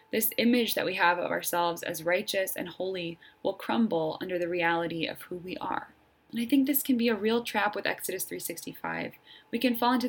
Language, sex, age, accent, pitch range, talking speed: English, female, 20-39, American, 185-245 Hz, 215 wpm